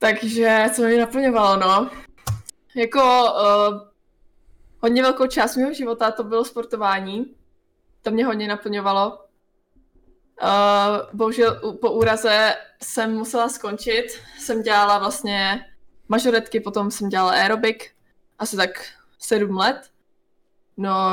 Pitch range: 200-245 Hz